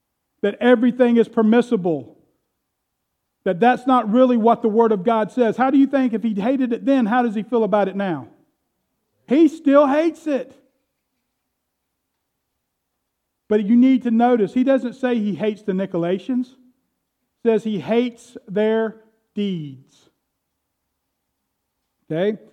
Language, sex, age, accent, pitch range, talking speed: English, male, 50-69, American, 185-250 Hz, 140 wpm